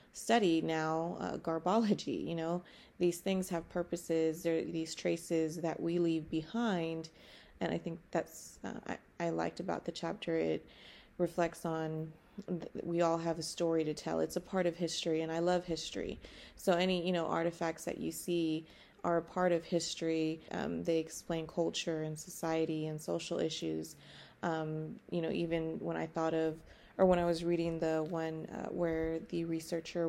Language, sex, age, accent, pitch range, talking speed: English, female, 20-39, American, 160-175 Hz, 175 wpm